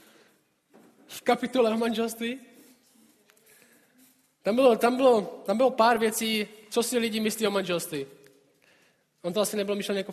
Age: 20-39